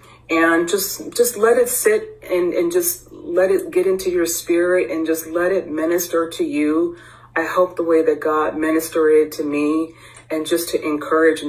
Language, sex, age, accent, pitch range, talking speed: English, female, 40-59, American, 140-165 Hz, 185 wpm